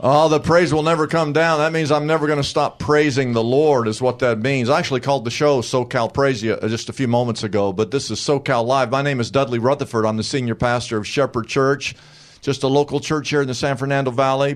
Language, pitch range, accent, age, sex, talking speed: English, 110-135 Hz, American, 50-69, male, 250 wpm